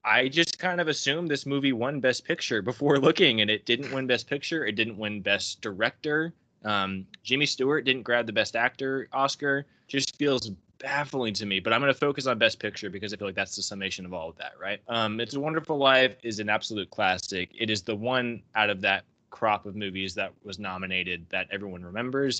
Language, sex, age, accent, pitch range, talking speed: English, male, 20-39, American, 100-130 Hz, 220 wpm